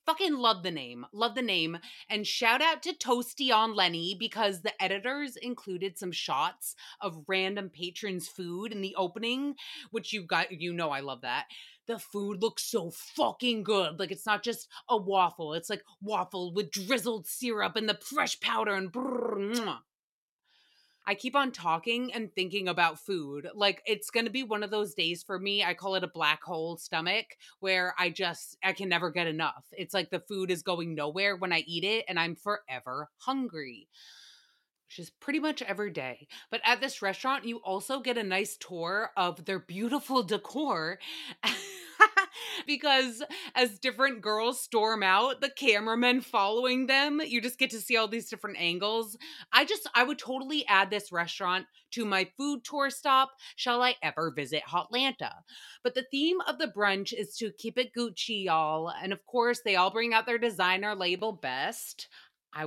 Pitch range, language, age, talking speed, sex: 185-245 Hz, English, 30-49, 180 wpm, female